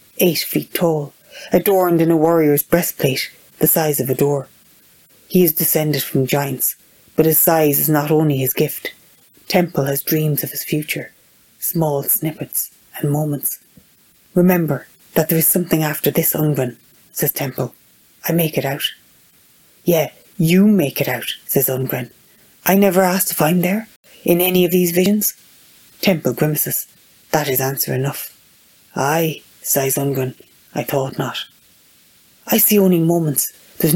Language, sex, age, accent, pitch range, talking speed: English, female, 30-49, Irish, 140-170 Hz, 150 wpm